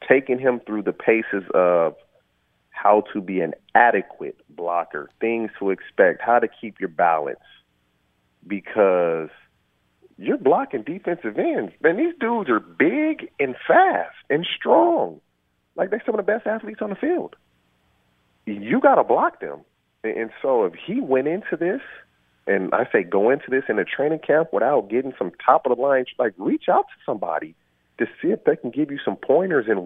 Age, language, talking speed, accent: 40-59, English, 170 wpm, American